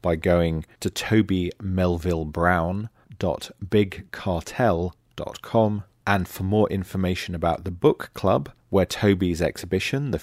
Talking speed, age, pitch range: 95 wpm, 40-59, 85-105 Hz